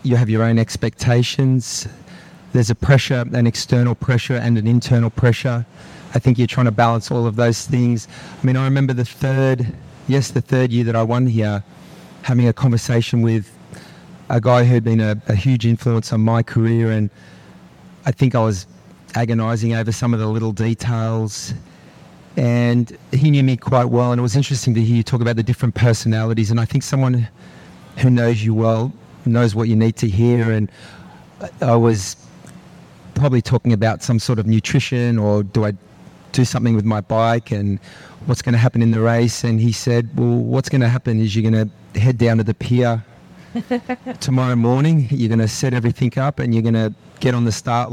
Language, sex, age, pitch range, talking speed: English, male, 30-49, 115-130 Hz, 195 wpm